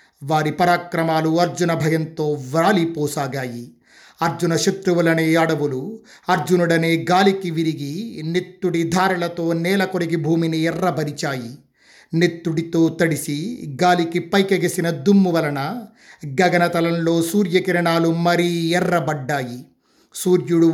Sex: male